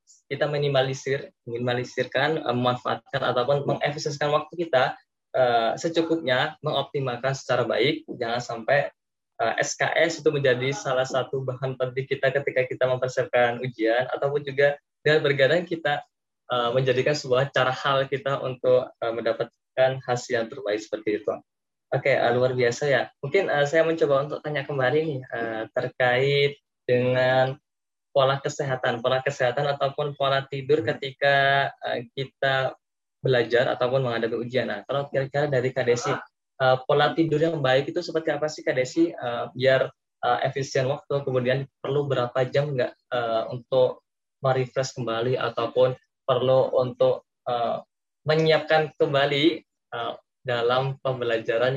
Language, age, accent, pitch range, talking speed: Indonesian, 20-39, native, 125-145 Hz, 125 wpm